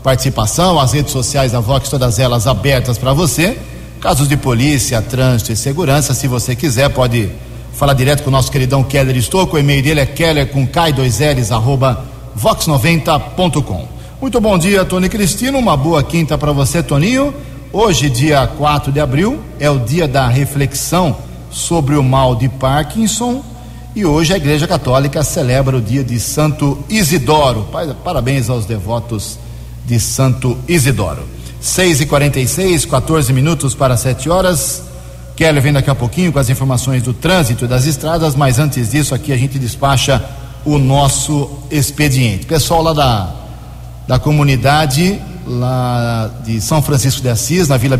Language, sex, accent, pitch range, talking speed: Portuguese, male, Brazilian, 125-150 Hz, 160 wpm